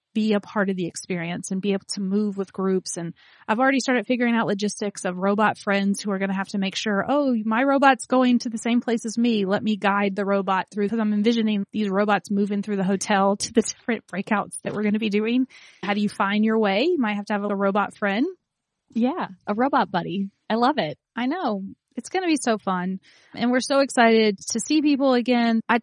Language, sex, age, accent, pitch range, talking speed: English, female, 30-49, American, 195-235 Hz, 240 wpm